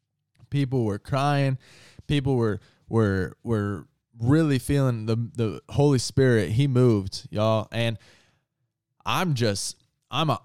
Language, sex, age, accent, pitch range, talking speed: English, male, 20-39, American, 105-140 Hz, 115 wpm